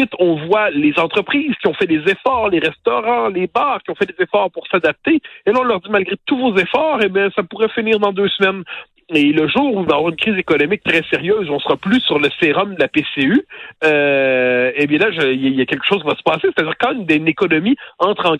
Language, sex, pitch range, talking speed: French, male, 160-225 Hz, 260 wpm